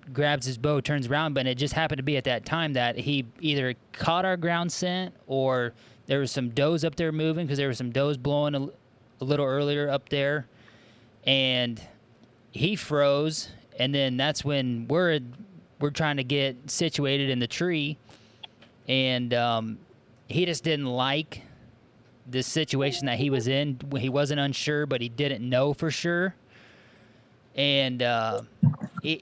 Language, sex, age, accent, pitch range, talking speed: English, male, 20-39, American, 120-145 Hz, 165 wpm